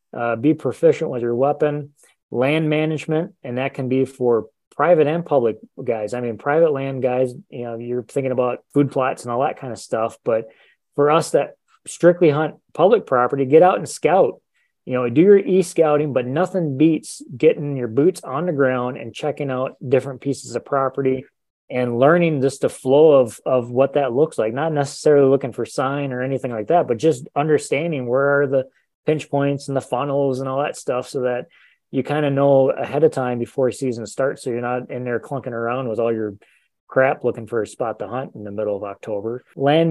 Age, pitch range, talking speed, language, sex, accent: 20-39, 125-145 Hz, 205 wpm, English, male, American